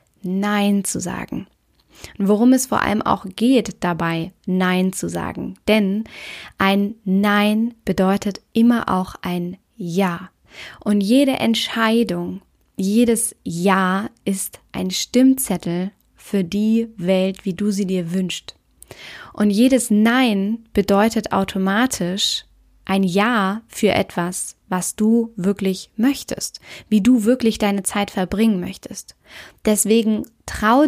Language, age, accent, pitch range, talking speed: German, 20-39, German, 190-225 Hz, 115 wpm